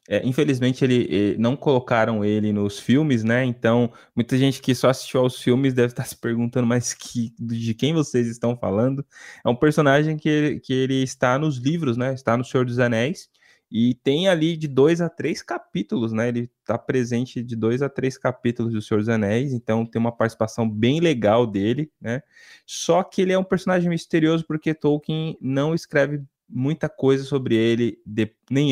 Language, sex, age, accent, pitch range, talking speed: Portuguese, male, 20-39, Brazilian, 115-150 Hz, 185 wpm